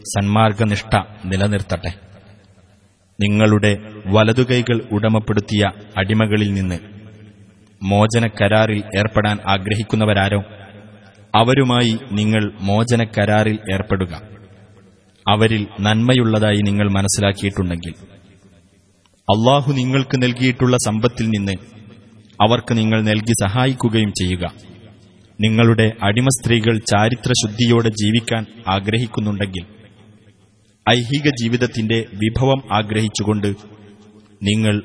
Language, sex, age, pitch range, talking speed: Arabic, male, 30-49, 100-115 Hz, 65 wpm